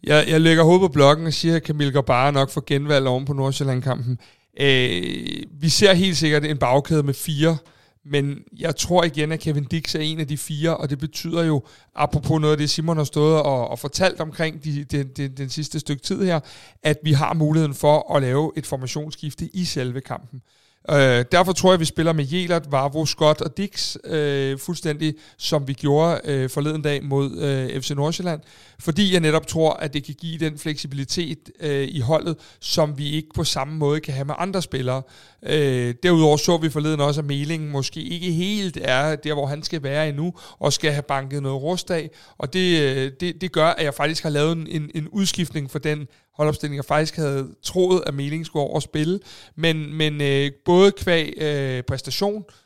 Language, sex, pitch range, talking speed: Danish, male, 140-160 Hz, 205 wpm